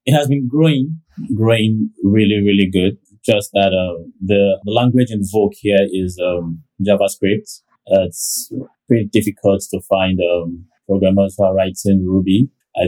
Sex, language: male, English